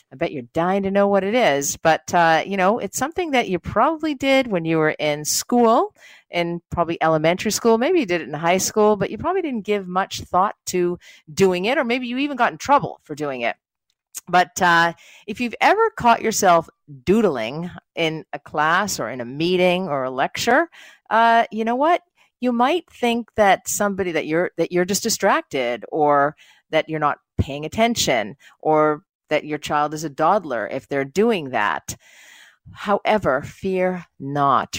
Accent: American